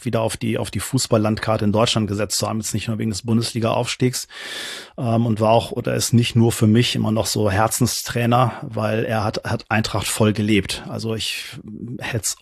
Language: German